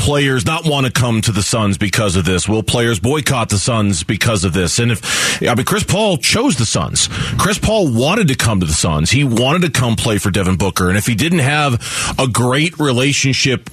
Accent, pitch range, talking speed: American, 115-155 Hz, 225 wpm